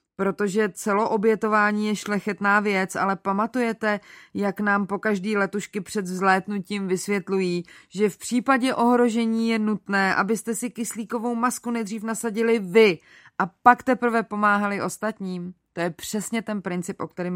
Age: 30-49